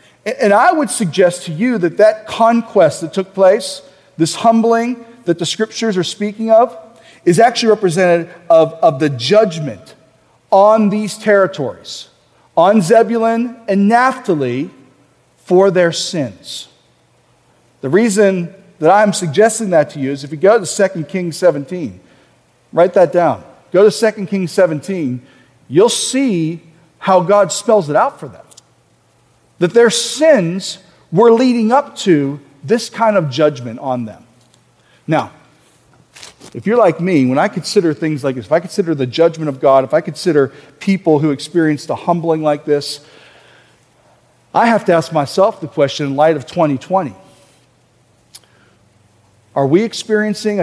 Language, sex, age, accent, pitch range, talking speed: English, male, 40-59, American, 150-215 Hz, 150 wpm